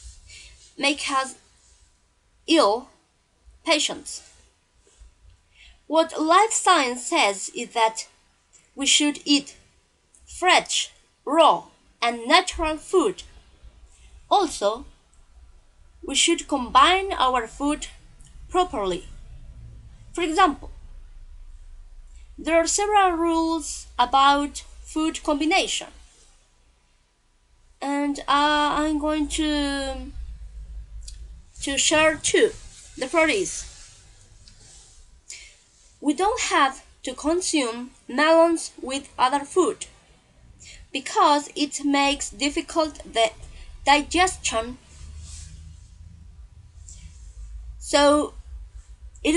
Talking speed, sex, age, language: 75 wpm, female, 30-49, English